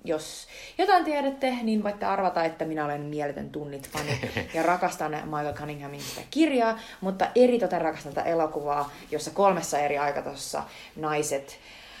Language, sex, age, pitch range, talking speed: Finnish, female, 30-49, 140-180 Hz, 140 wpm